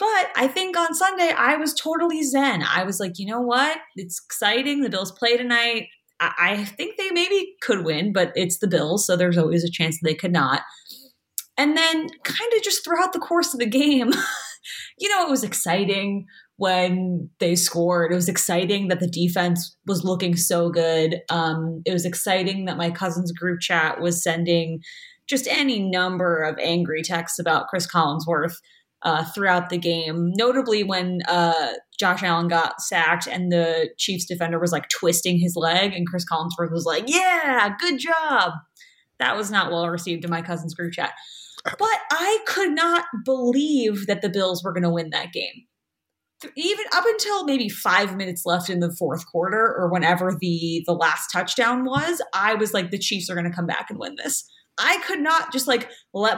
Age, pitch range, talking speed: 20-39, 175-265 Hz, 190 wpm